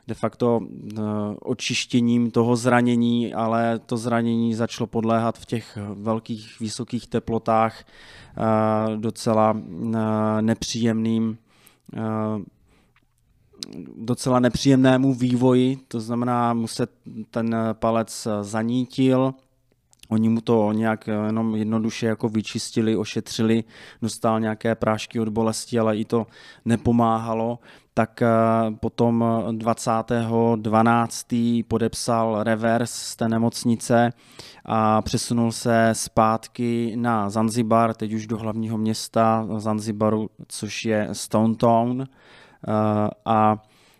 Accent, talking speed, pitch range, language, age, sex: native, 100 wpm, 110-115 Hz, Czech, 20-39, male